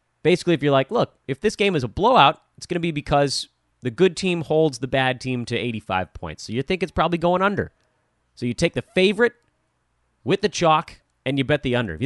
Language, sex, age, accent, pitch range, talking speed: English, male, 30-49, American, 130-185 Hz, 240 wpm